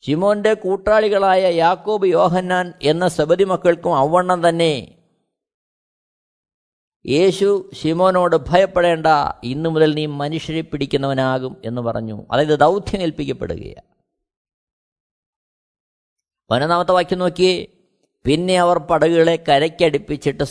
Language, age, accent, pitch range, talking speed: Malayalam, 20-39, native, 150-235 Hz, 75 wpm